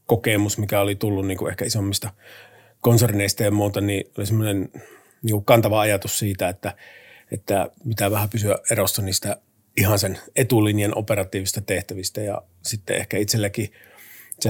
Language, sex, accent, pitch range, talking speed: Finnish, male, native, 100-115 Hz, 140 wpm